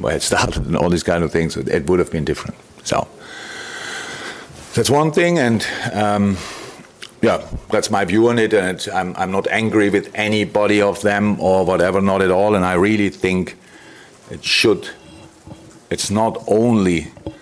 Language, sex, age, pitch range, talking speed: English, male, 50-69, 85-100 Hz, 175 wpm